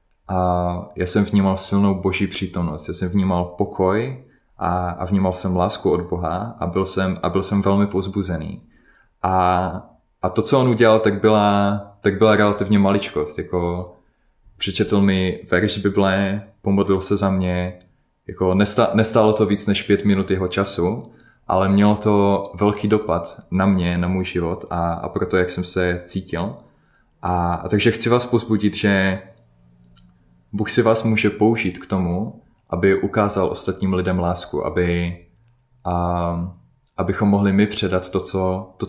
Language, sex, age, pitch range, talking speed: Czech, male, 20-39, 90-105 Hz, 155 wpm